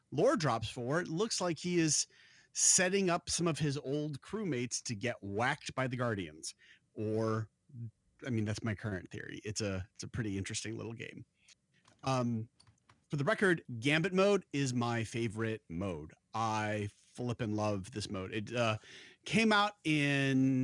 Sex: male